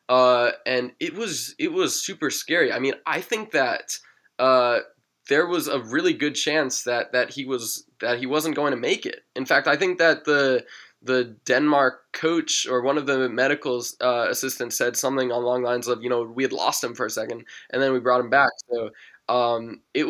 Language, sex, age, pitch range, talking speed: English, male, 20-39, 125-150 Hz, 210 wpm